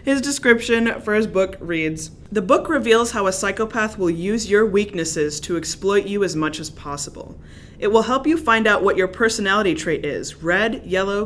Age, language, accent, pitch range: 30-49, English, American, 175-225 Hz